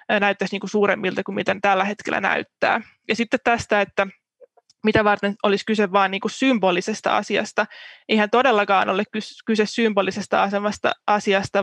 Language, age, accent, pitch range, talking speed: Finnish, 20-39, native, 195-215 Hz, 145 wpm